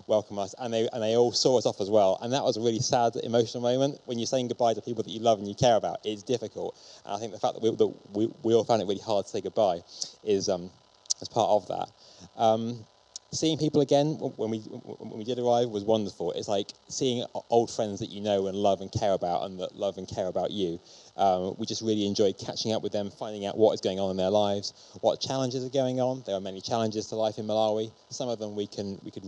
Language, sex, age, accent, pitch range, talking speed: English, male, 20-39, British, 95-115 Hz, 265 wpm